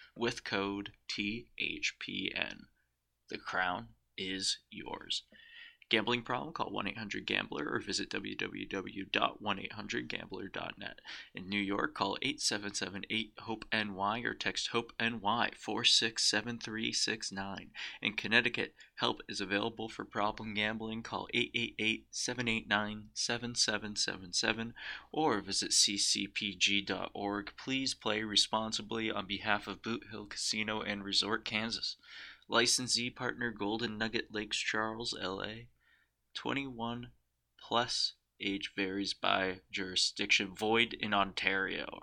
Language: English